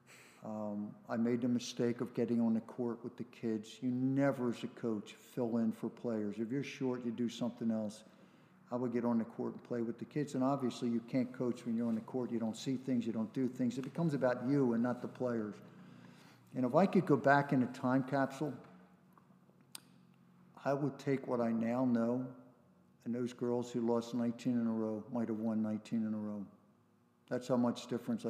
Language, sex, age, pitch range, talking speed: English, male, 50-69, 110-125 Hz, 220 wpm